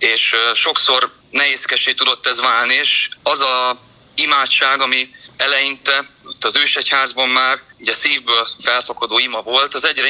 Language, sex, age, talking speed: Hungarian, male, 30-49, 130 wpm